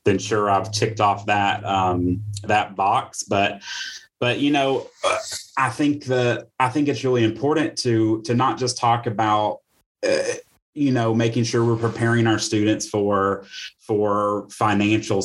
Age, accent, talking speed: 30-49, American, 155 wpm